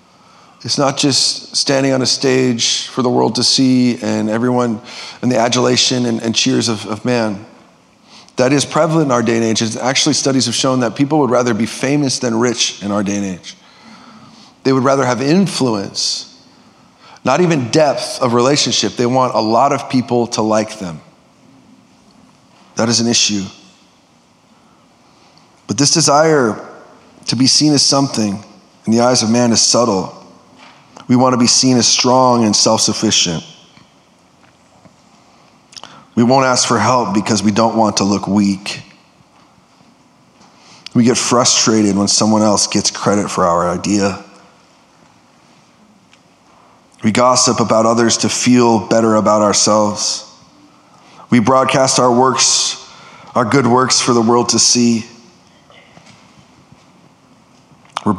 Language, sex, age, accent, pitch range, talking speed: English, male, 30-49, American, 110-130 Hz, 145 wpm